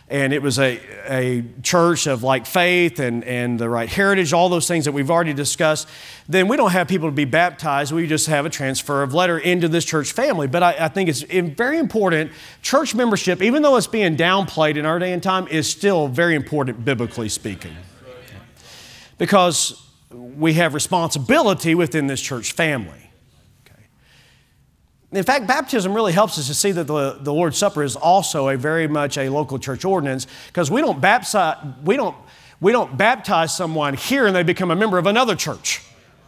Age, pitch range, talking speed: 40-59, 140-195 Hz, 190 wpm